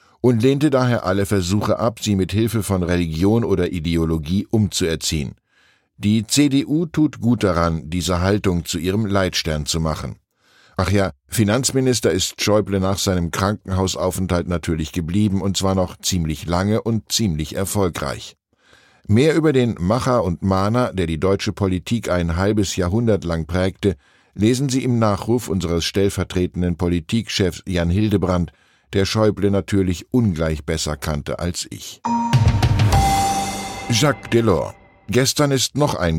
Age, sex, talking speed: 10-29, male, 135 wpm